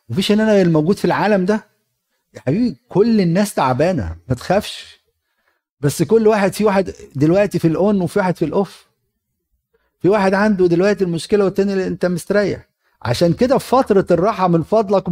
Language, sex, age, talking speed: Arabic, male, 50-69, 165 wpm